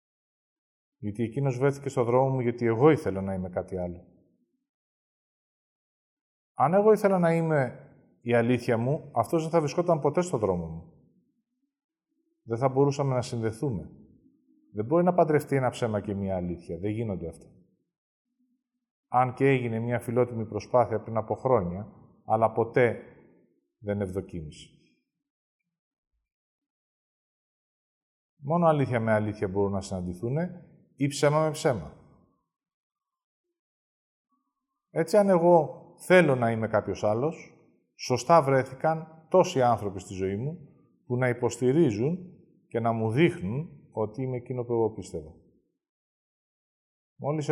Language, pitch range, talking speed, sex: Greek, 110-165 Hz, 125 wpm, male